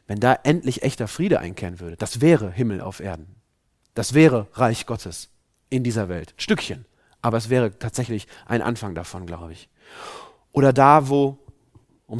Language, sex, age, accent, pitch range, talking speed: German, male, 40-59, German, 110-135 Hz, 160 wpm